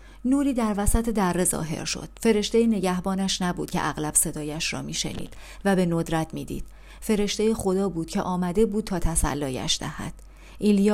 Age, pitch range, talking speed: 40-59, 170-215 Hz, 160 wpm